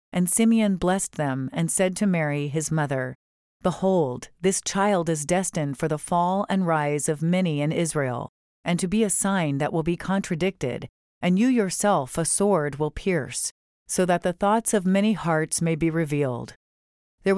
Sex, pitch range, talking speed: female, 150-190 Hz, 175 wpm